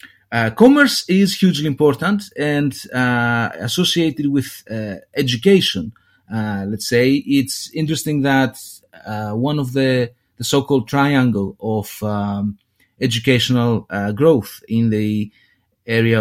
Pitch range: 115-145 Hz